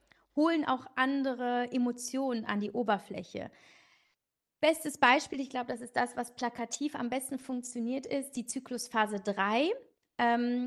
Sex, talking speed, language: female, 135 wpm, German